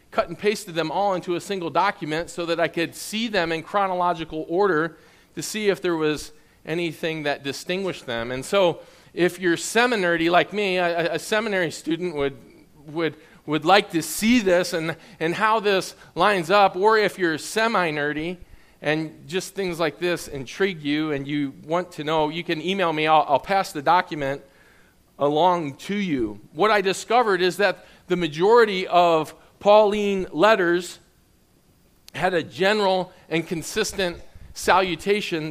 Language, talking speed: English, 160 wpm